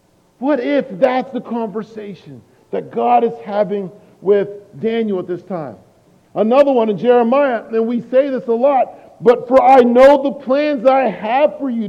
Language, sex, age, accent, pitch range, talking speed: English, male, 50-69, American, 170-240 Hz, 170 wpm